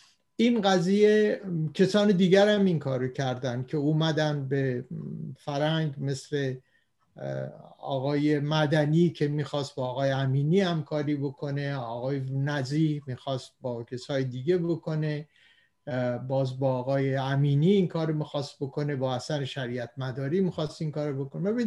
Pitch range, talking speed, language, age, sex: 145-190 Hz, 125 wpm, Persian, 50-69, male